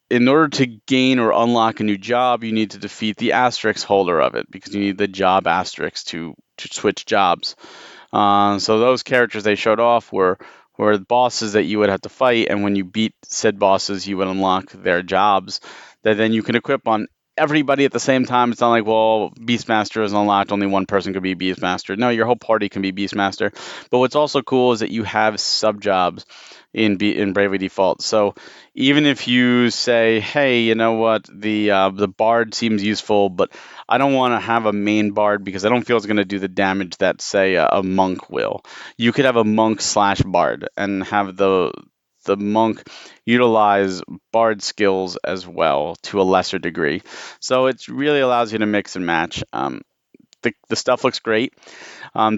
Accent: American